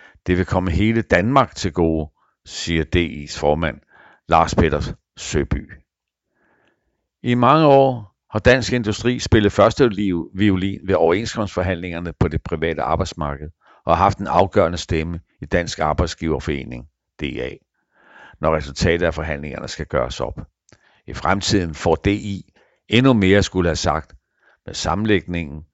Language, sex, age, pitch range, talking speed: Danish, male, 60-79, 85-110 Hz, 130 wpm